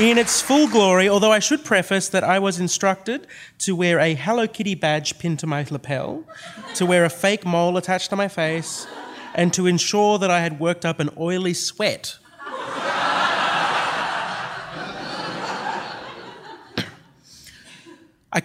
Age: 30-49